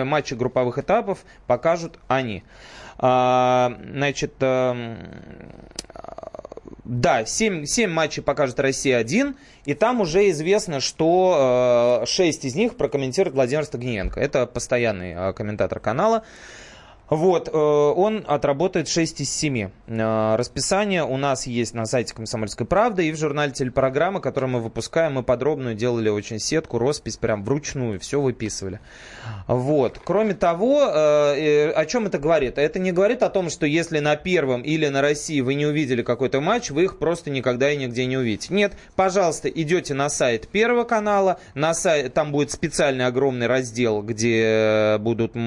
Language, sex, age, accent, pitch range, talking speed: Russian, male, 20-39, native, 125-165 Hz, 140 wpm